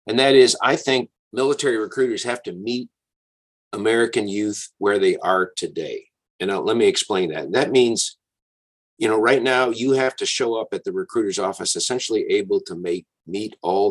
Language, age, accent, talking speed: English, 50-69, American, 190 wpm